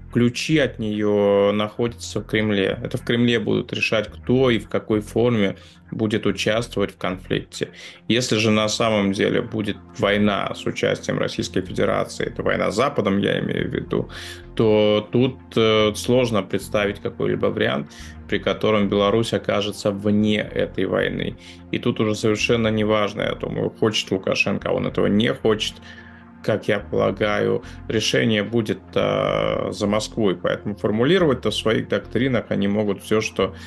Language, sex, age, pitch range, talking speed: Russian, male, 20-39, 95-110 Hz, 150 wpm